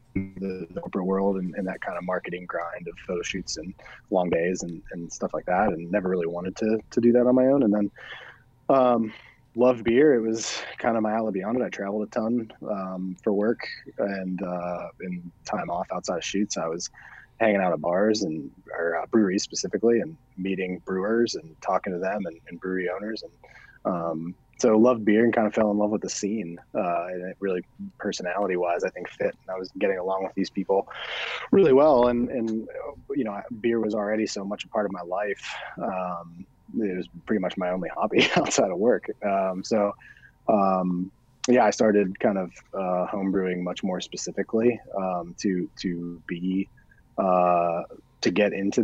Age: 20-39